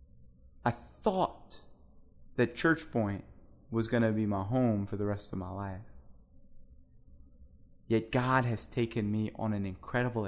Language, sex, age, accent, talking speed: English, male, 20-39, American, 140 wpm